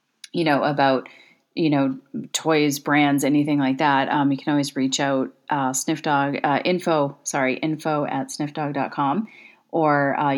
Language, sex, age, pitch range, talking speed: English, female, 30-49, 145-175 Hz, 150 wpm